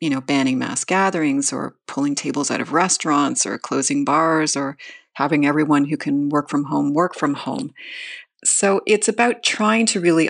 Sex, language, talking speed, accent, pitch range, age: female, English, 180 wpm, American, 145-205 Hz, 40-59